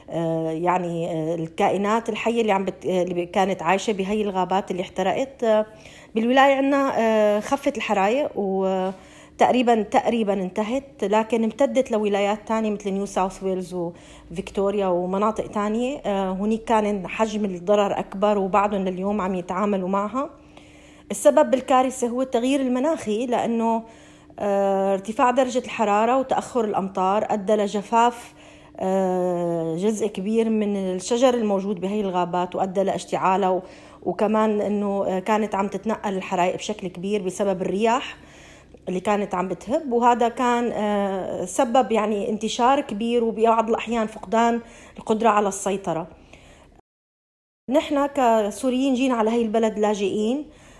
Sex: female